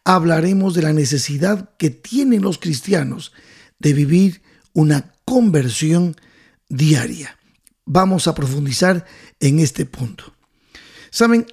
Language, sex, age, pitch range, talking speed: Spanish, male, 50-69, 155-210 Hz, 105 wpm